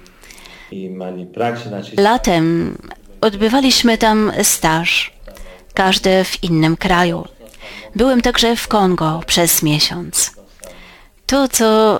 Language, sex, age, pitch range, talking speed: Polish, female, 30-49, 160-205 Hz, 80 wpm